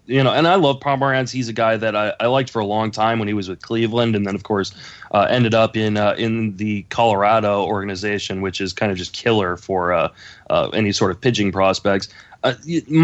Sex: male